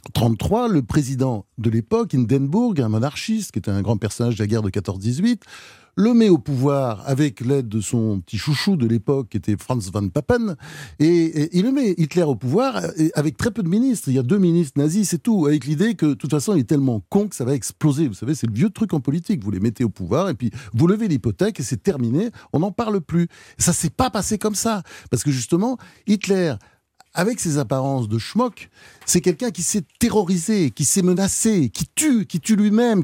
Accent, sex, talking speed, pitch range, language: French, male, 230 wpm, 125-200 Hz, French